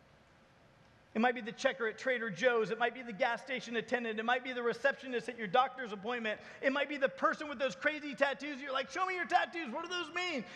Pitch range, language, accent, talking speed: 215-290 Hz, English, American, 245 wpm